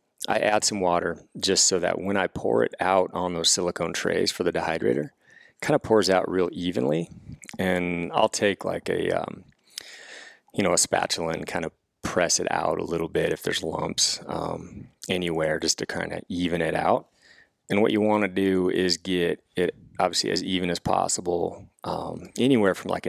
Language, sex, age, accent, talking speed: English, male, 30-49, American, 190 wpm